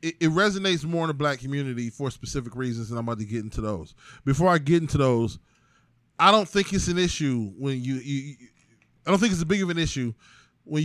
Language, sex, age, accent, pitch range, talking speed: English, male, 20-39, American, 125-155 Hz, 230 wpm